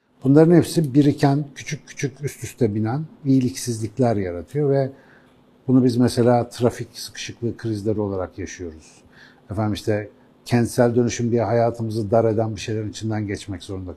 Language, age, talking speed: Turkish, 60-79, 140 wpm